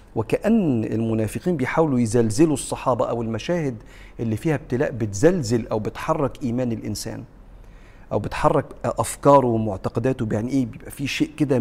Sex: male